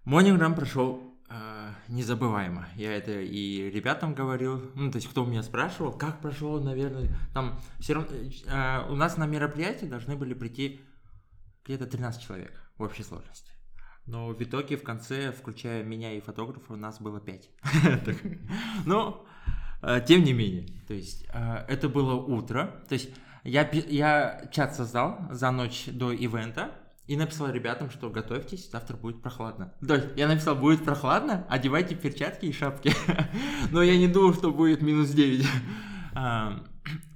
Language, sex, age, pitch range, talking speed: Russian, male, 20-39, 115-150 Hz, 150 wpm